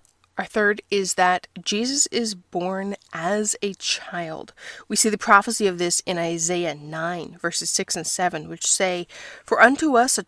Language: English